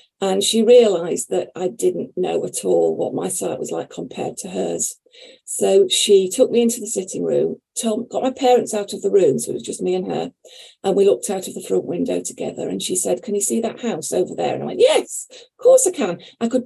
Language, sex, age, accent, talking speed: English, female, 40-59, British, 245 wpm